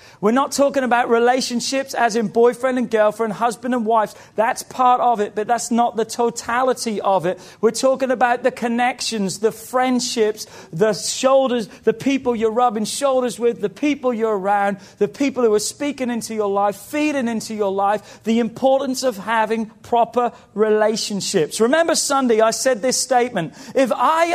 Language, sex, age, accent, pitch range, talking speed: English, male, 40-59, British, 205-270 Hz, 170 wpm